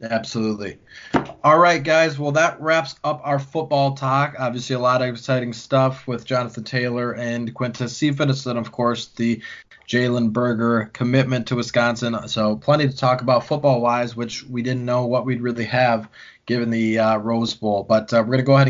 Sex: male